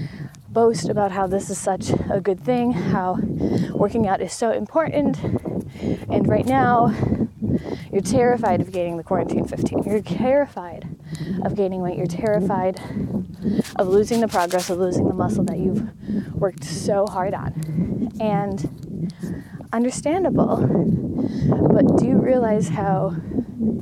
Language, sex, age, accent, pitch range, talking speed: English, female, 20-39, American, 175-215 Hz, 135 wpm